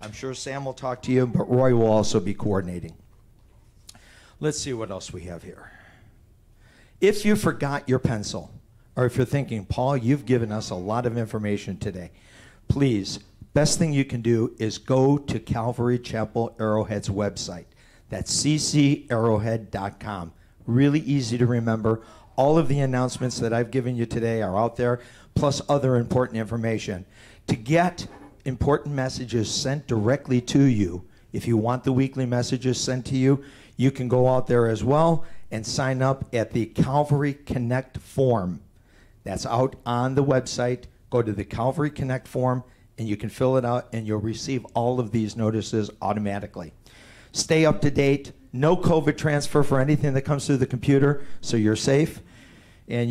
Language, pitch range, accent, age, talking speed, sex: English, 110-135 Hz, American, 50-69, 165 wpm, male